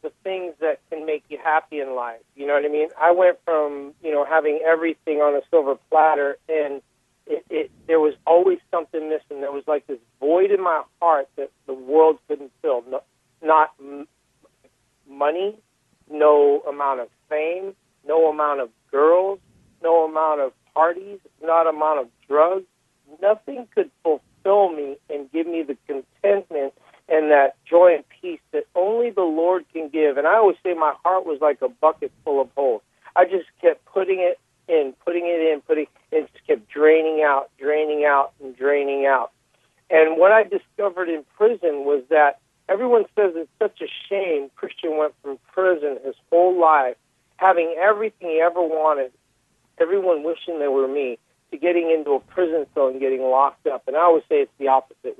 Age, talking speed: 50-69, 185 wpm